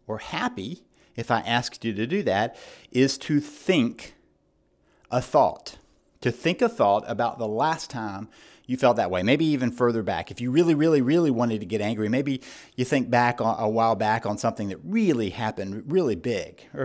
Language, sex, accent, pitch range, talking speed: English, male, American, 115-145 Hz, 190 wpm